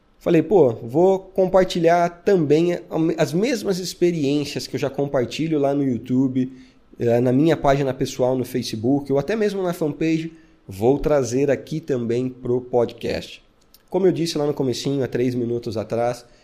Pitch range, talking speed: 130-165 Hz, 155 wpm